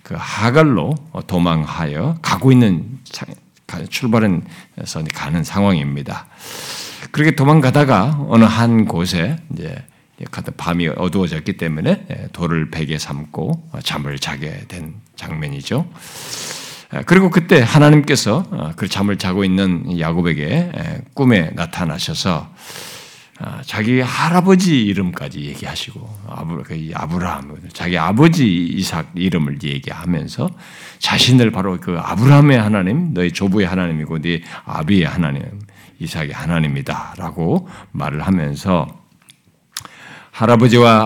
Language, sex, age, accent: Korean, male, 50-69, native